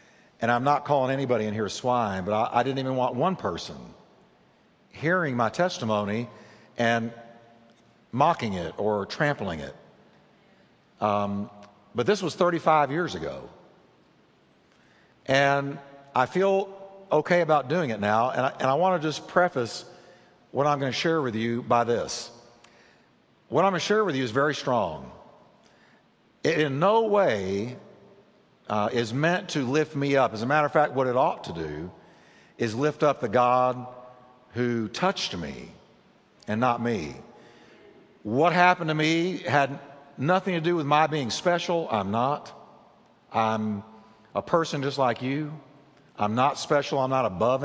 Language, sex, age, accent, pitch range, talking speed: English, male, 60-79, American, 120-160 Hz, 155 wpm